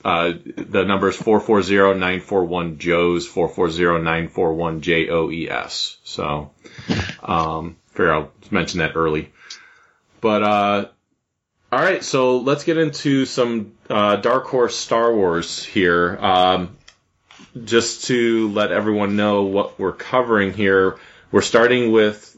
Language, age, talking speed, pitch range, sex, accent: English, 30-49, 105 wpm, 90-110 Hz, male, American